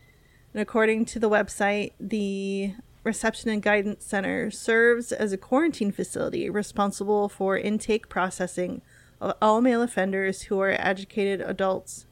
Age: 30-49